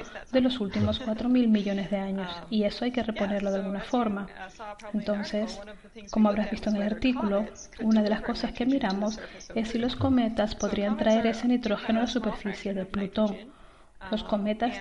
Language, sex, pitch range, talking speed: Spanish, female, 205-235 Hz, 180 wpm